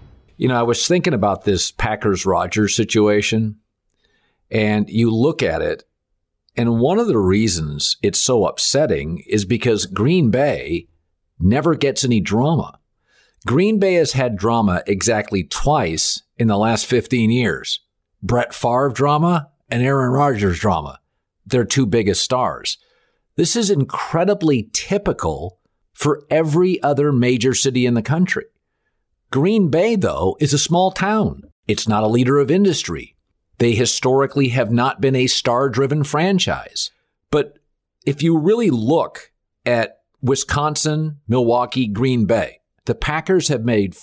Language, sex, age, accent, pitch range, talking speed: English, male, 50-69, American, 105-145 Hz, 135 wpm